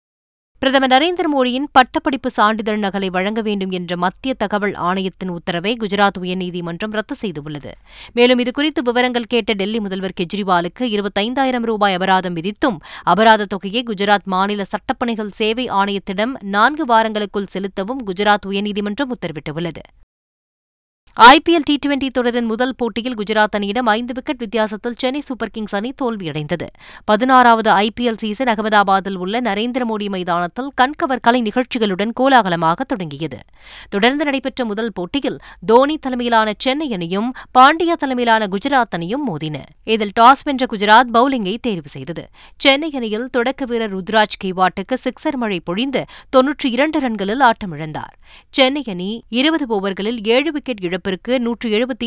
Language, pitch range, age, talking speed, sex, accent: Tamil, 195-255 Hz, 20-39, 125 wpm, female, native